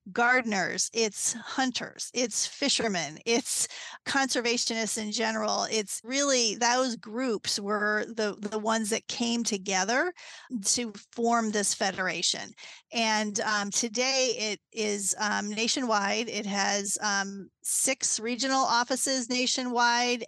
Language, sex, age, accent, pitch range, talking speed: English, female, 40-59, American, 210-240 Hz, 110 wpm